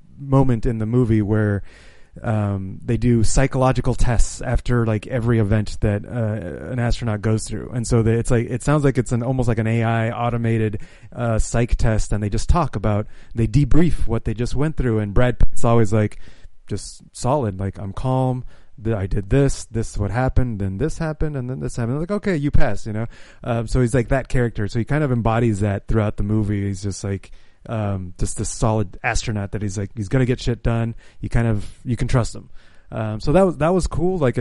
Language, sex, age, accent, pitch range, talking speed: English, male, 30-49, American, 110-125 Hz, 225 wpm